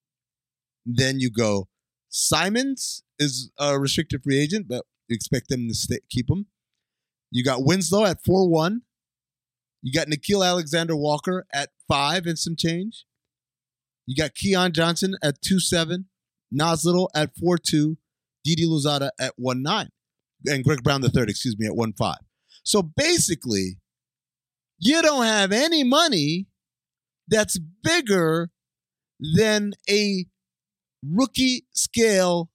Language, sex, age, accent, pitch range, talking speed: English, male, 30-49, American, 130-185 Hz, 120 wpm